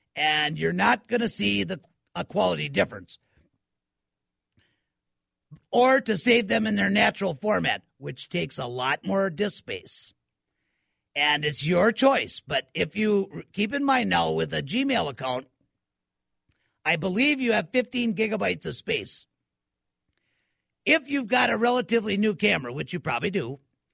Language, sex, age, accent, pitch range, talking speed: English, male, 50-69, American, 150-240 Hz, 150 wpm